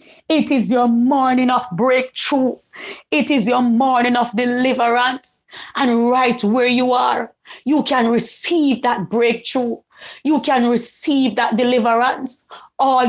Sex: female